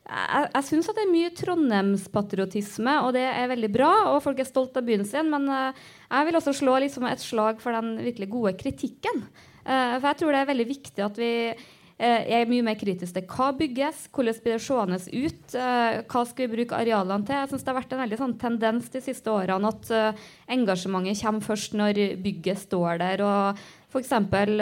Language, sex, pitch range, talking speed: English, female, 215-270 Hz, 205 wpm